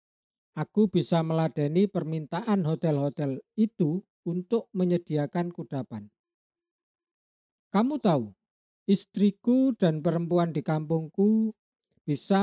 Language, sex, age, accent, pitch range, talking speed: Indonesian, male, 50-69, native, 140-195 Hz, 80 wpm